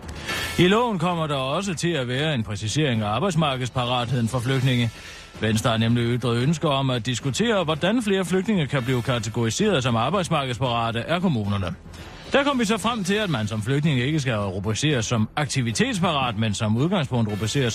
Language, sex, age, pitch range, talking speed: Danish, male, 40-59, 110-165 Hz, 170 wpm